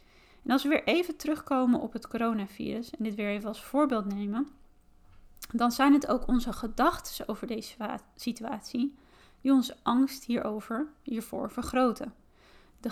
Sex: female